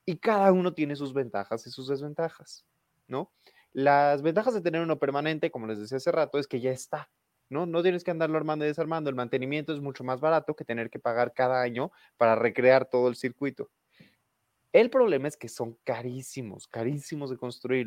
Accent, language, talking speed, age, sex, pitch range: Mexican, Spanish, 200 wpm, 20-39, male, 115-145 Hz